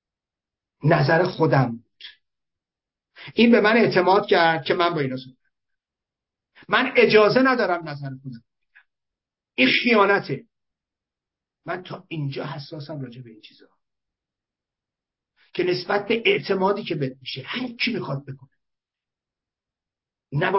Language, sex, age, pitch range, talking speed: Persian, male, 50-69, 135-205 Hz, 110 wpm